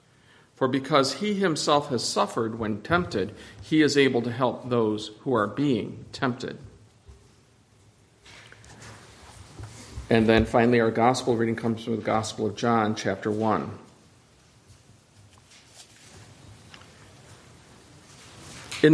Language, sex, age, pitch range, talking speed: English, male, 50-69, 115-145 Hz, 105 wpm